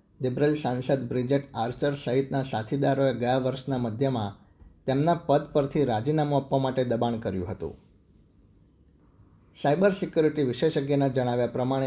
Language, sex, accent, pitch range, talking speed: Gujarati, male, native, 115-140 Hz, 105 wpm